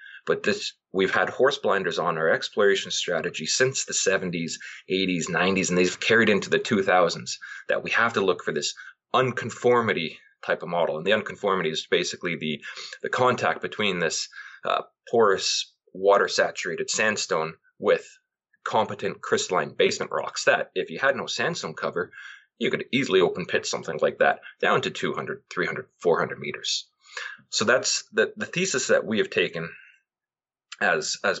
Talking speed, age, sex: 160 wpm, 20-39, male